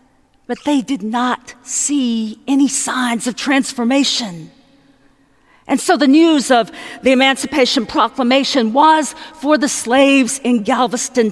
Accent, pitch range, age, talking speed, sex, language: American, 215-280 Hz, 50-69, 120 wpm, female, English